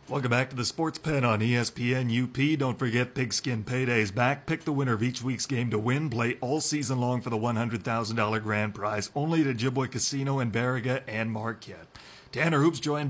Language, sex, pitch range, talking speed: English, male, 120-150 Hz, 195 wpm